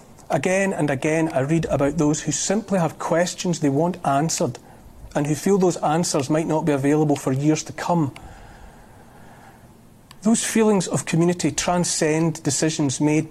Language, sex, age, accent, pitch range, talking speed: English, male, 40-59, British, 140-165 Hz, 155 wpm